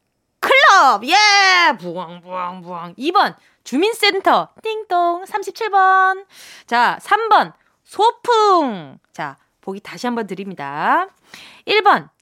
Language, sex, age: Korean, female, 20-39